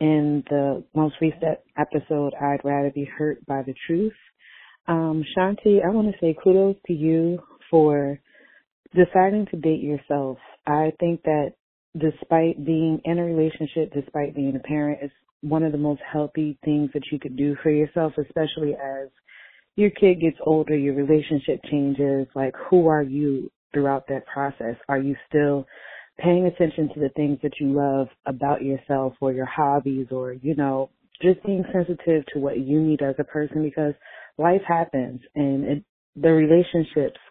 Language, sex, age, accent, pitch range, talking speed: English, female, 30-49, American, 140-160 Hz, 165 wpm